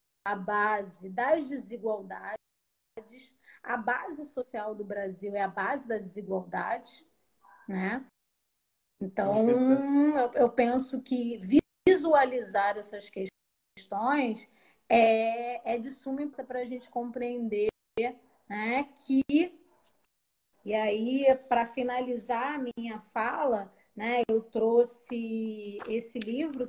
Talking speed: 100 wpm